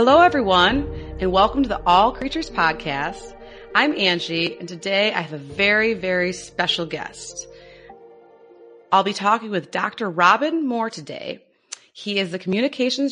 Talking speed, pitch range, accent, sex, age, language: 145 wpm, 170-240 Hz, American, female, 30-49, English